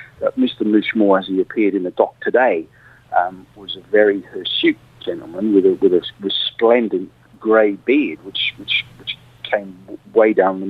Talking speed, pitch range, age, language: 165 wpm, 105-130 Hz, 40-59, English